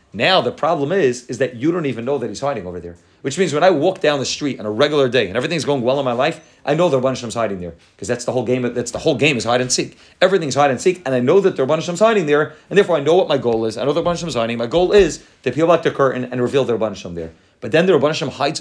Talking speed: 305 wpm